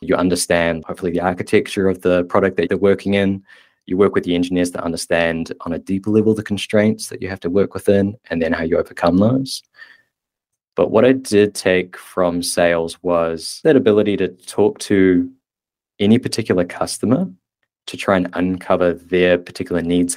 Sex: male